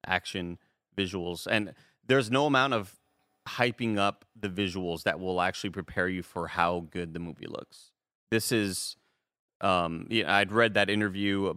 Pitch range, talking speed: 90-110 Hz, 150 wpm